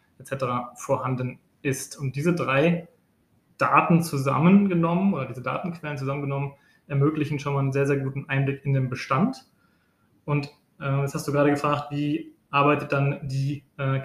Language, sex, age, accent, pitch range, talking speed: German, male, 20-39, German, 135-155 Hz, 150 wpm